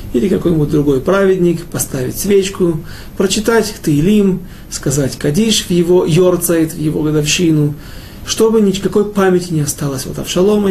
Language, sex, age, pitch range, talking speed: Russian, male, 40-59, 145-195 Hz, 130 wpm